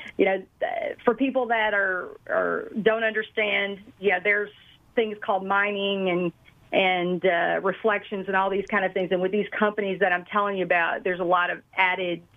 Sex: female